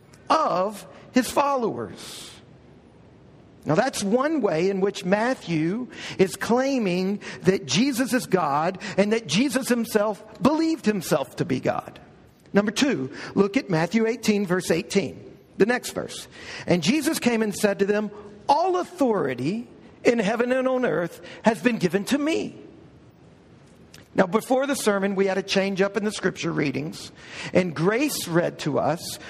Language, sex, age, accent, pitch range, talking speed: English, male, 50-69, American, 190-240 Hz, 150 wpm